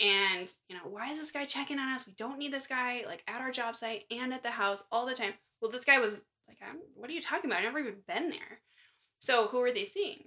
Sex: female